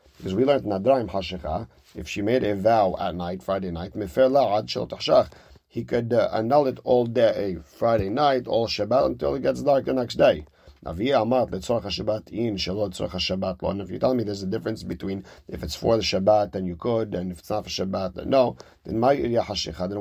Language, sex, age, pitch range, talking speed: English, male, 40-59, 95-115 Hz, 175 wpm